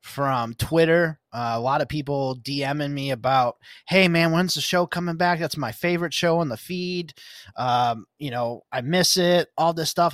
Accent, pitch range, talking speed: American, 130-160 Hz, 190 wpm